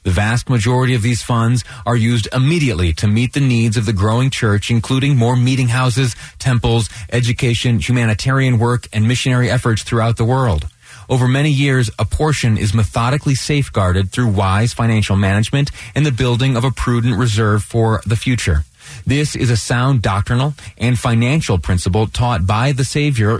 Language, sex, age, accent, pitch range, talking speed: English, male, 30-49, American, 100-125 Hz, 165 wpm